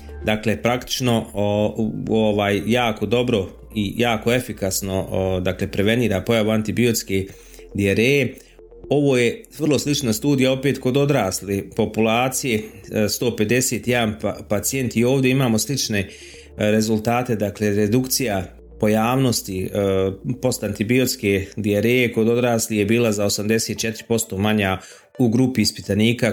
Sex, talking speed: male, 105 wpm